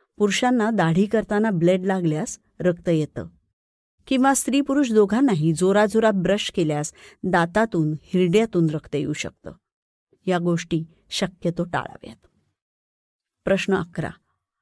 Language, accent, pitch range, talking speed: Marathi, native, 170-225 Hz, 105 wpm